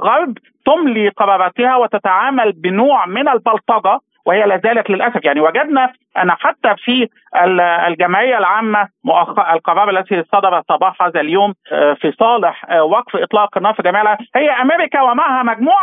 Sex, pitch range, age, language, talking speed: male, 205-265 Hz, 50-69, Arabic, 125 wpm